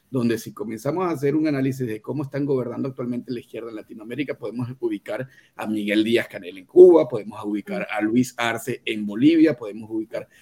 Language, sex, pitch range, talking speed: Spanish, male, 110-140 Hz, 190 wpm